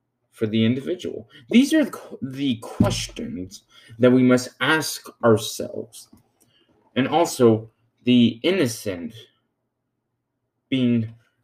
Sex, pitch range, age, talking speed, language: male, 110-130 Hz, 20-39, 90 wpm, English